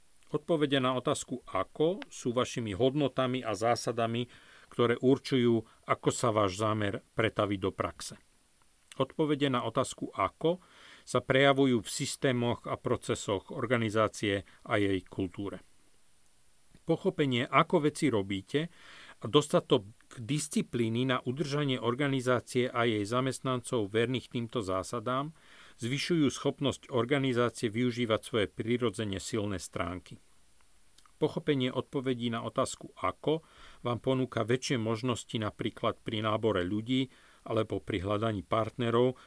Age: 40-59